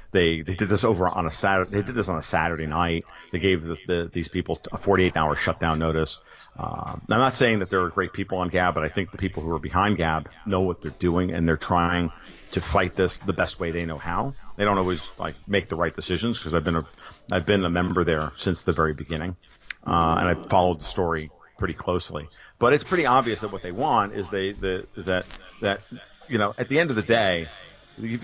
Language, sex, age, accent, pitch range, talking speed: English, male, 50-69, American, 85-105 Hz, 240 wpm